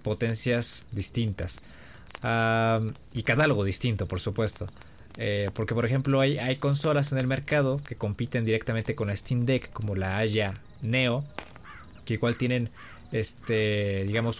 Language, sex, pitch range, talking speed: Spanish, male, 105-130 Hz, 140 wpm